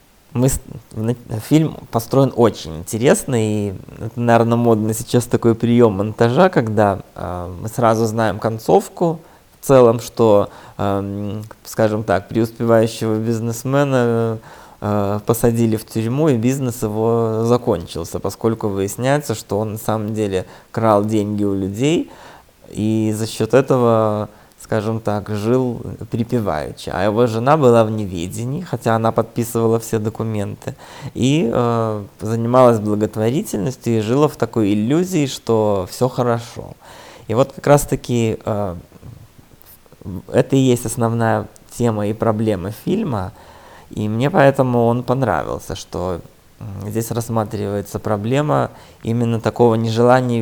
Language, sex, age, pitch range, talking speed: Russian, male, 20-39, 105-125 Hz, 120 wpm